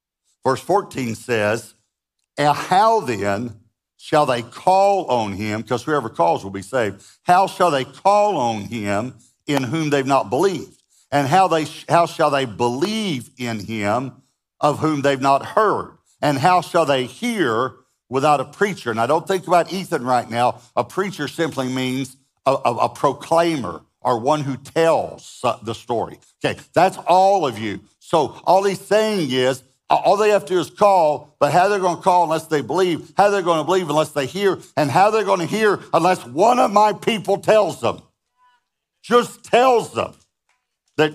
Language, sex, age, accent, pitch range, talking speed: English, male, 60-79, American, 115-170 Hz, 180 wpm